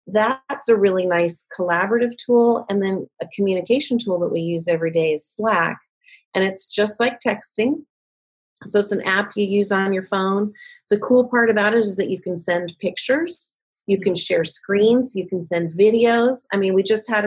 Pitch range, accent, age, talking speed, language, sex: 195-245 Hz, American, 30-49, 195 wpm, English, female